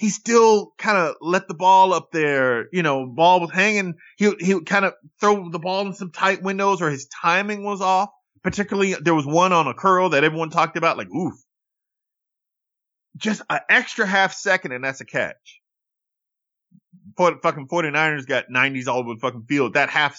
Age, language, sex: 30-49, English, male